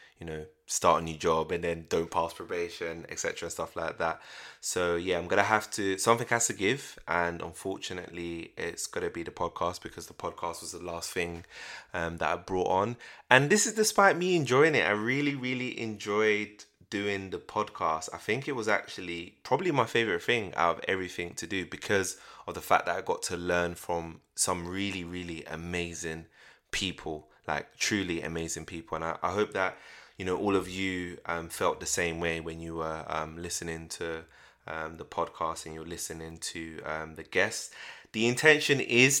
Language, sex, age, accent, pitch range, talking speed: English, male, 20-39, British, 80-105 Hz, 195 wpm